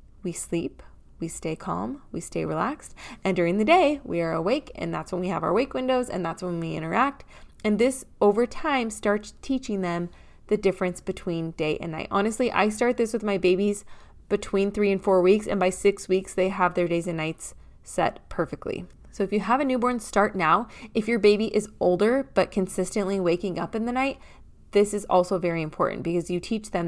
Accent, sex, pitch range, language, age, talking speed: American, female, 175-205 Hz, English, 20-39, 210 wpm